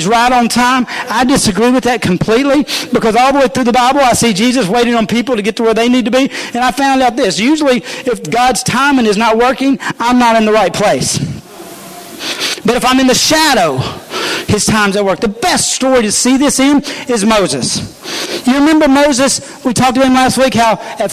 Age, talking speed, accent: 40-59, 220 wpm, American